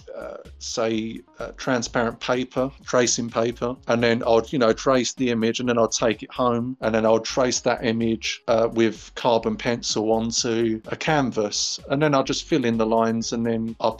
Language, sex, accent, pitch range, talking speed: English, male, British, 115-140 Hz, 195 wpm